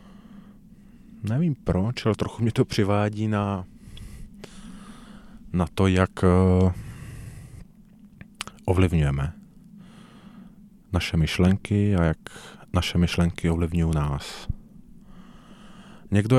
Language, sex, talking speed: Czech, male, 75 wpm